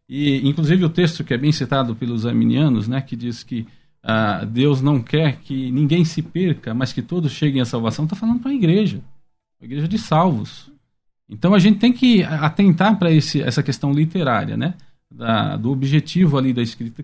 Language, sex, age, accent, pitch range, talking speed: Portuguese, male, 40-59, Brazilian, 130-180 Hz, 190 wpm